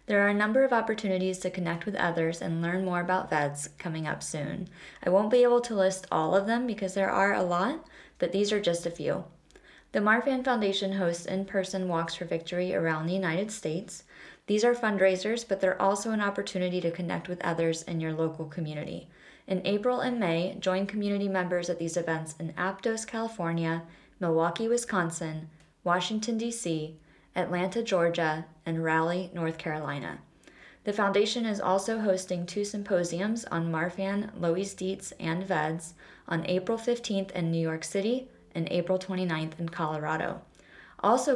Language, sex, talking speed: English, female, 165 wpm